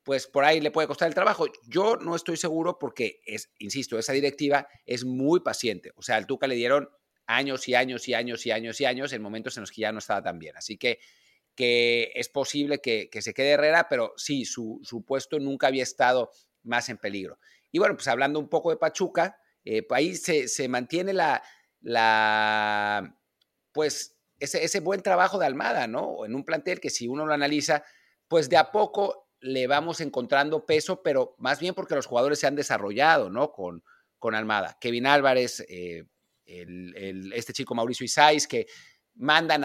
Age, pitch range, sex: 50-69, 125-165 Hz, male